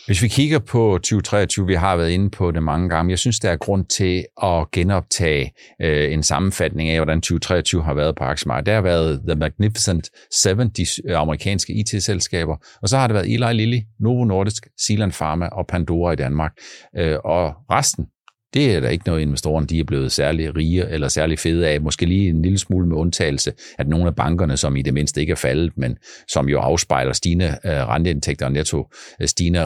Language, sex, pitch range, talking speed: Danish, male, 80-120 Hz, 200 wpm